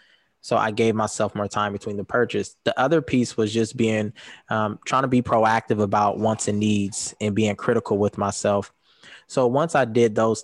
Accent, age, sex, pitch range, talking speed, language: American, 20-39, male, 105-115 Hz, 195 wpm, English